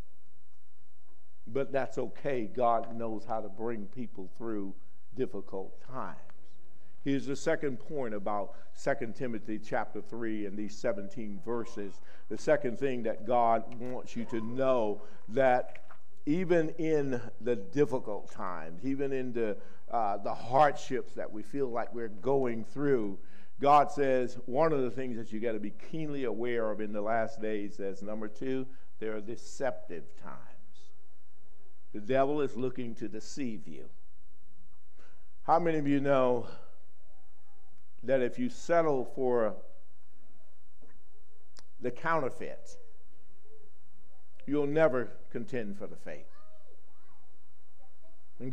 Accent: American